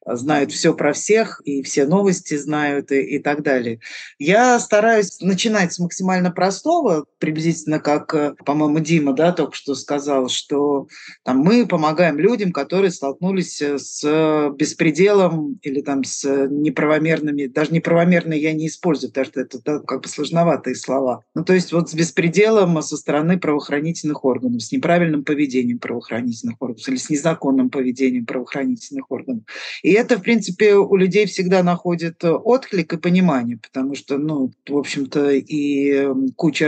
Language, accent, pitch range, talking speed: Russian, native, 135-170 Hz, 150 wpm